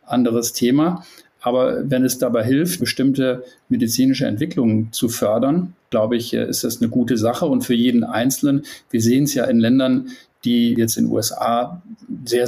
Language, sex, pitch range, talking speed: German, male, 115-140 Hz, 170 wpm